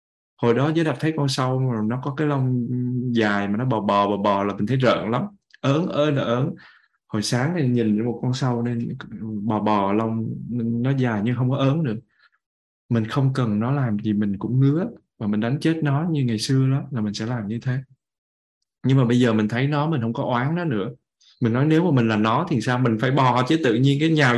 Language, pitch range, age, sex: Vietnamese, 105-135 Hz, 20-39, male